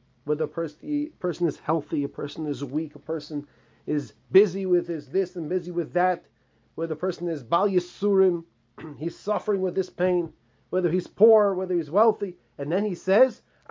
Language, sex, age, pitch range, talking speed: English, male, 30-49, 125-180 Hz, 175 wpm